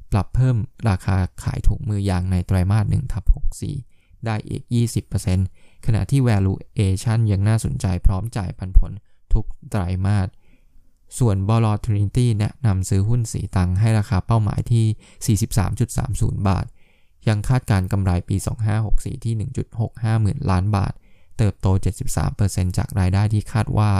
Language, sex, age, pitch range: Thai, male, 20-39, 95-115 Hz